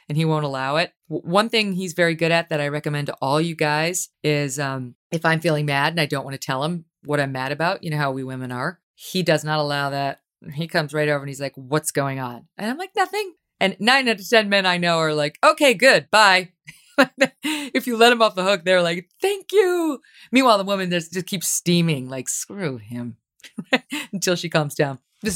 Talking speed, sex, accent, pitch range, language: 230 wpm, female, American, 145-205 Hz, English